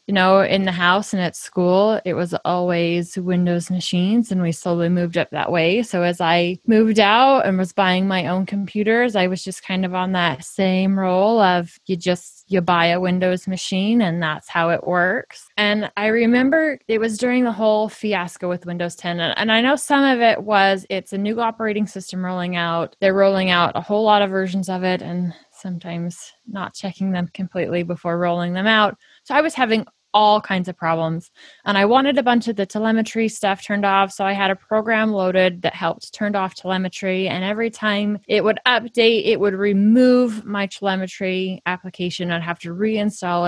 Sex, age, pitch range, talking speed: female, 20-39, 180-215 Hz, 200 wpm